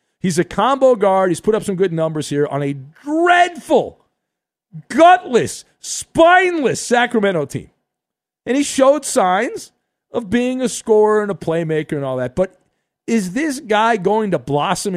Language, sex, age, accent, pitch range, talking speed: English, male, 50-69, American, 170-245 Hz, 155 wpm